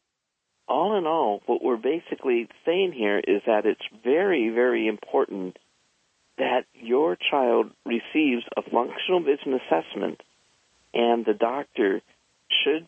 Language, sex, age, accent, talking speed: English, male, 50-69, American, 120 wpm